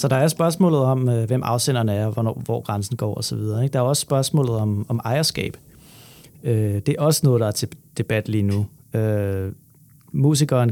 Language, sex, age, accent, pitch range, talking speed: Danish, male, 30-49, native, 115-145 Hz, 175 wpm